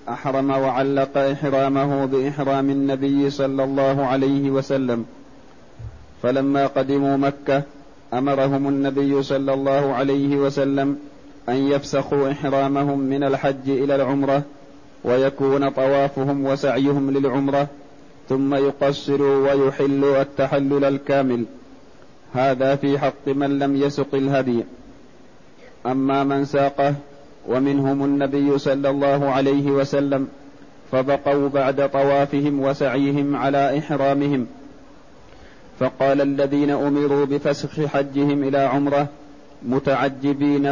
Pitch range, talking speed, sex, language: 135-140 Hz, 95 wpm, male, Arabic